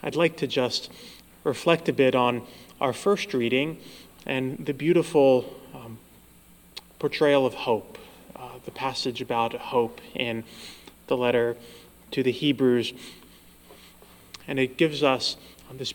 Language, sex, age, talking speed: English, male, 20-39, 130 wpm